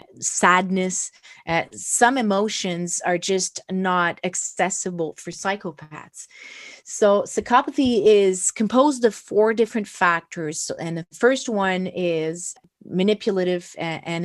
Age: 30-49